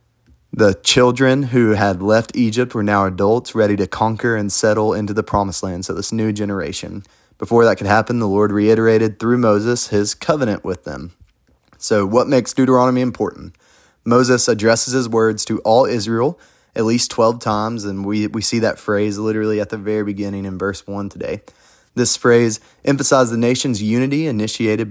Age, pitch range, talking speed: 20-39, 100-115 Hz, 175 wpm